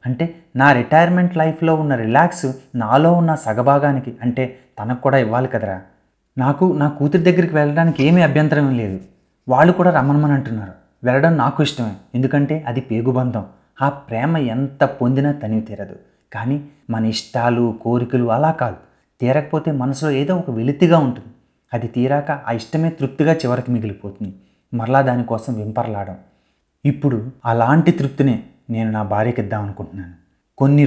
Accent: native